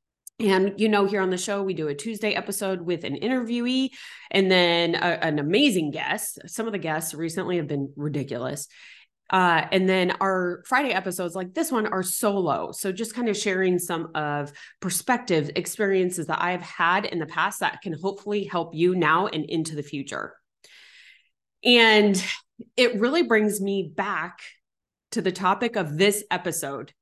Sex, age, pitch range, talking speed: female, 20-39, 160-205 Hz, 170 wpm